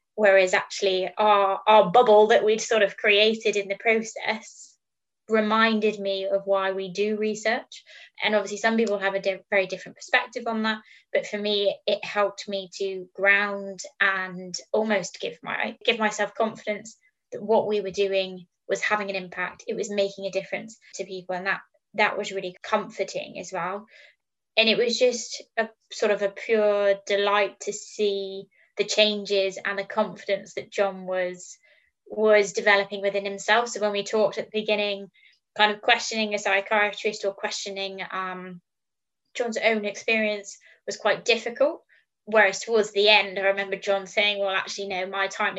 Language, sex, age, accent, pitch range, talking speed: English, female, 20-39, British, 195-220 Hz, 170 wpm